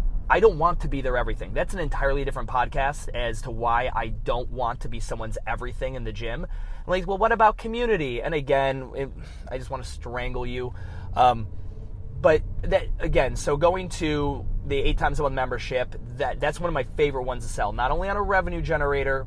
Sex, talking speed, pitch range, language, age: male, 210 wpm, 115-150 Hz, English, 20-39